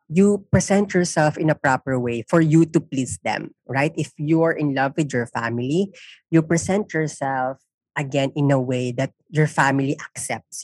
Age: 20-39